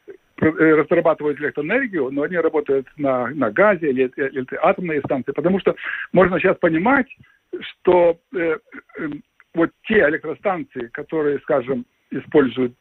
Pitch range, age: 160-225 Hz, 60-79